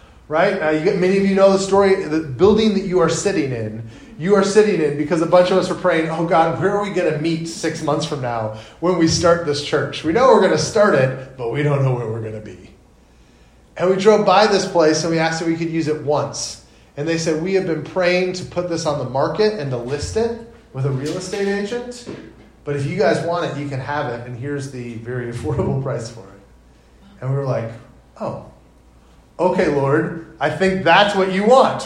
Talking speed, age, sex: 245 wpm, 30-49, male